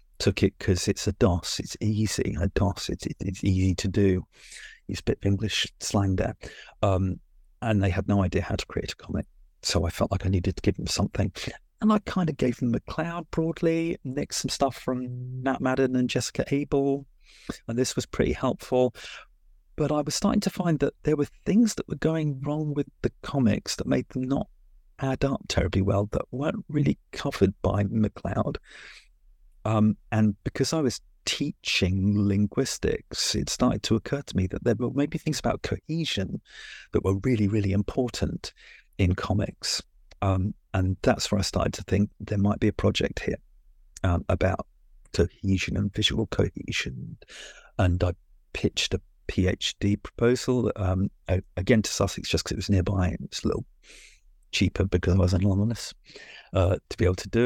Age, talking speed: 40-59, 180 wpm